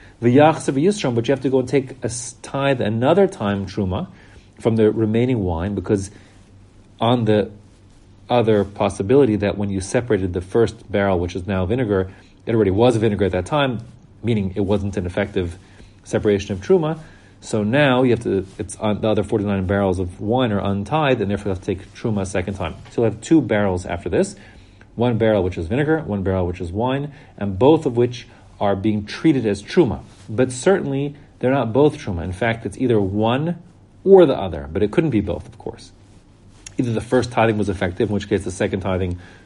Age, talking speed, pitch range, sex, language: 40-59, 200 wpm, 95-120 Hz, male, English